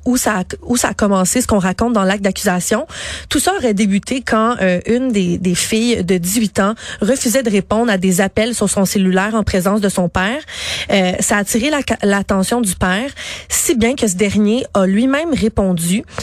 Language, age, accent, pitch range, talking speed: French, 30-49, Canadian, 185-220 Hz, 205 wpm